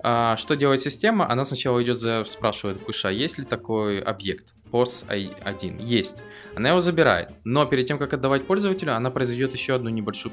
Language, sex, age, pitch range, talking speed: English, male, 20-39, 110-135 Hz, 175 wpm